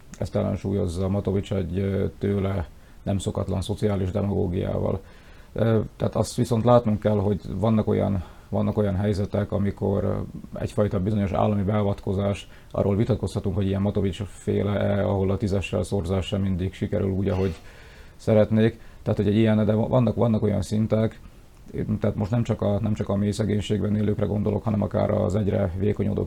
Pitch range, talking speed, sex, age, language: 100-105 Hz, 150 wpm, male, 30-49, Hungarian